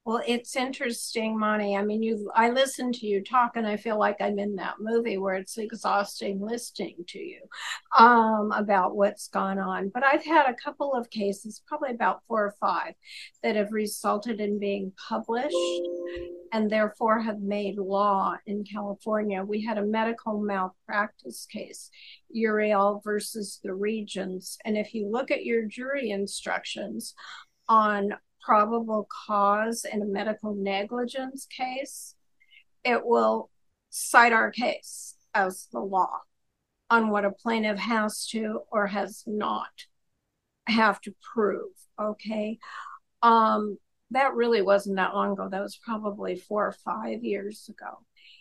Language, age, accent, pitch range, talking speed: English, 50-69, American, 200-230 Hz, 145 wpm